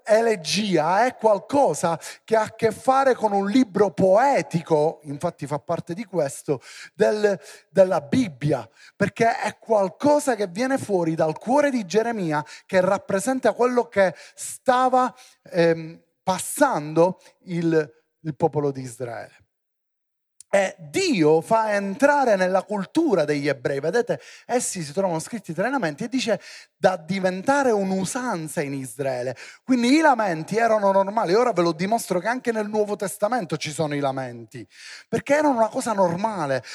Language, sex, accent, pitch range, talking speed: Italian, male, native, 155-230 Hz, 140 wpm